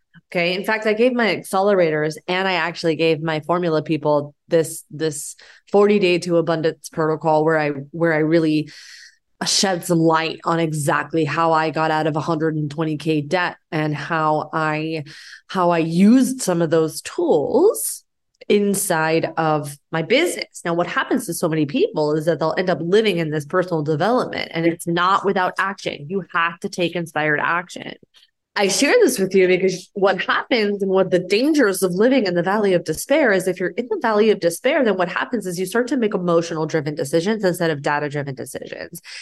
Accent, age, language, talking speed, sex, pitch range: American, 20-39, English, 190 wpm, female, 165-220 Hz